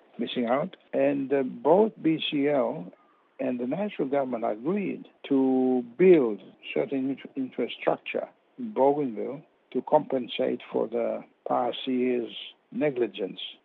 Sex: male